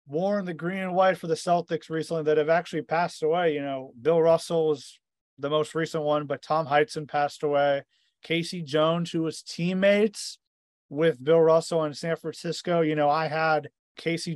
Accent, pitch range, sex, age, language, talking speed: American, 150-180 Hz, male, 30-49, English, 185 wpm